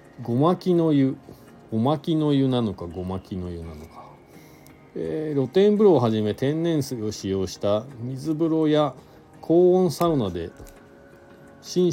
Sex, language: male, Japanese